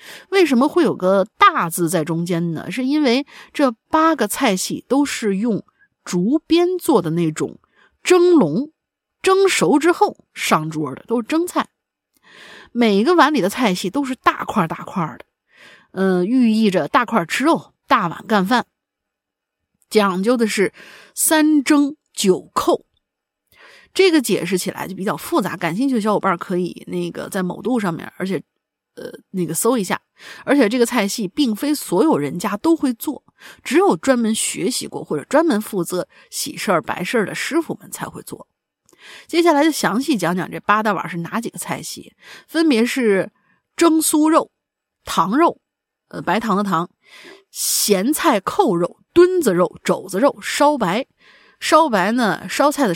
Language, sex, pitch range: Chinese, female, 185-305 Hz